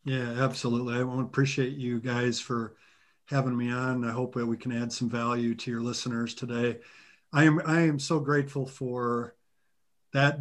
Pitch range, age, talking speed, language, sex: 120-140 Hz, 50-69, 185 wpm, English, male